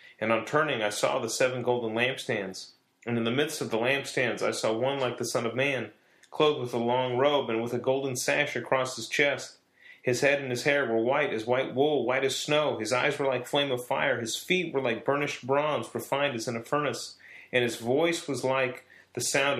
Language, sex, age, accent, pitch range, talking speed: English, male, 30-49, American, 115-145 Hz, 230 wpm